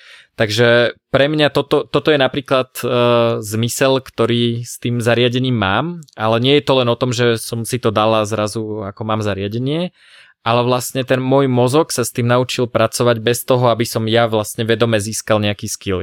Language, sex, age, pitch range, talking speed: Slovak, male, 20-39, 105-120 Hz, 185 wpm